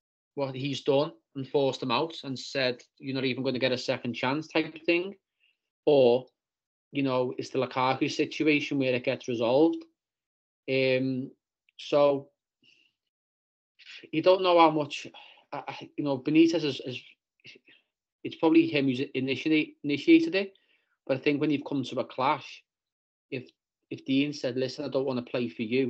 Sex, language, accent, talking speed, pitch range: male, English, British, 175 wpm, 120-140 Hz